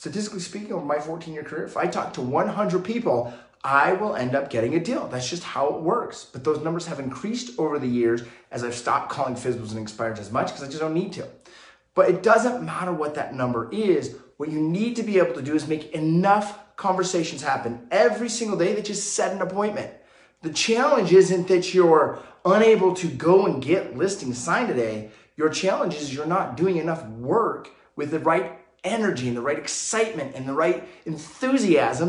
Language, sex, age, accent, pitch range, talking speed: English, male, 30-49, American, 140-195 Hz, 205 wpm